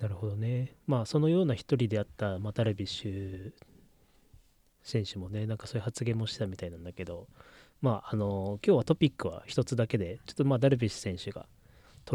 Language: Japanese